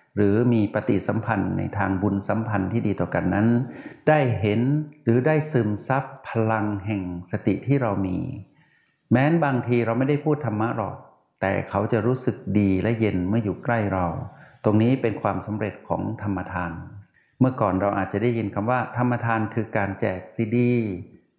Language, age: Thai, 60-79